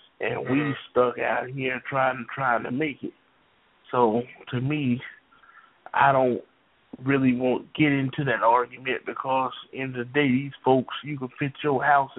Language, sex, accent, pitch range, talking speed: English, male, American, 125-140 Hz, 165 wpm